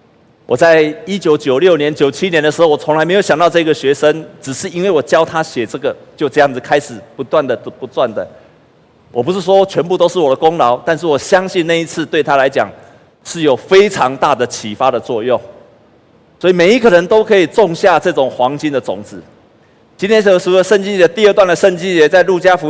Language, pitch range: Chinese, 135-180 Hz